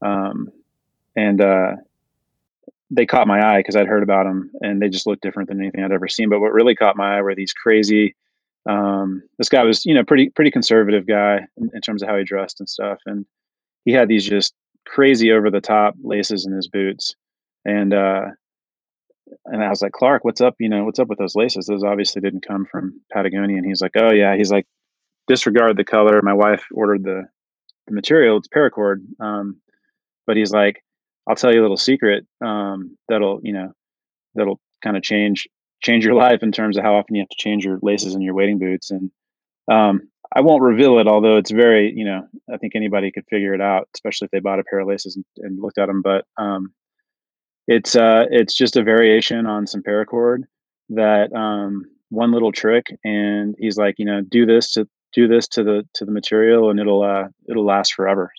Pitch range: 100-110 Hz